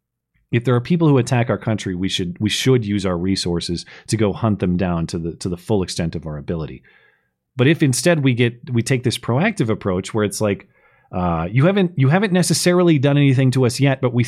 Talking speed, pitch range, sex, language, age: 230 wpm, 95-130 Hz, male, English, 30-49